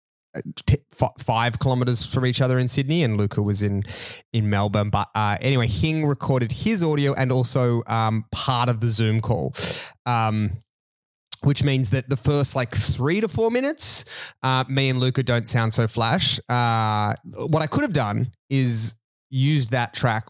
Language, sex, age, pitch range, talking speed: English, male, 20-39, 115-140 Hz, 170 wpm